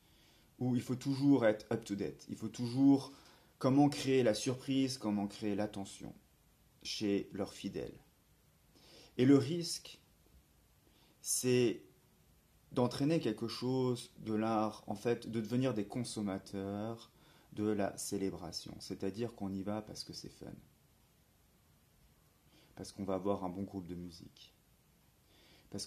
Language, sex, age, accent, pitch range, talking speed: French, male, 30-49, French, 95-120 Hz, 130 wpm